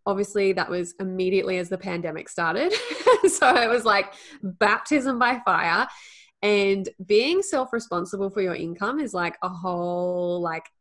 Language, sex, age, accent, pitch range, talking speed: English, female, 10-29, Australian, 180-220 Hz, 145 wpm